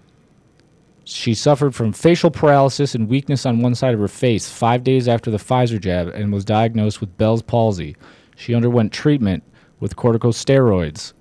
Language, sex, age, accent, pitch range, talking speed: English, male, 30-49, American, 100-125 Hz, 160 wpm